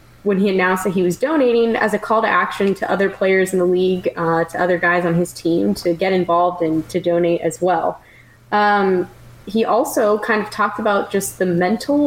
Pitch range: 175-215 Hz